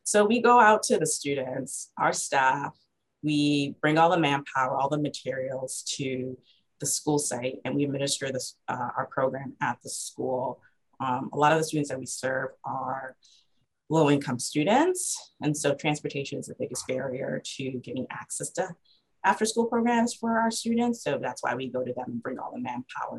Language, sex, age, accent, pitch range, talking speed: English, female, 30-49, American, 130-155 Hz, 180 wpm